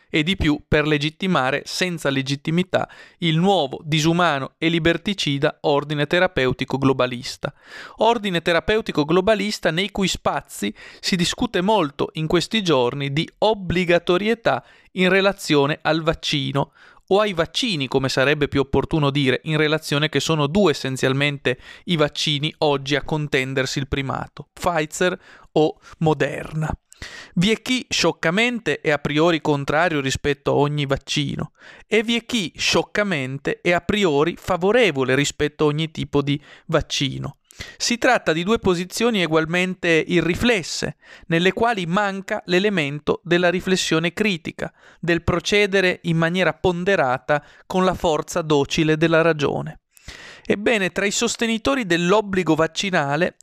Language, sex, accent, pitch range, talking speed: Italian, male, native, 150-195 Hz, 130 wpm